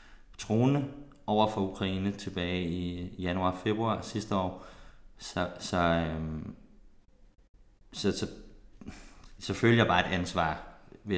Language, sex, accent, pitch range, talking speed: English, male, Danish, 85-100 Hz, 120 wpm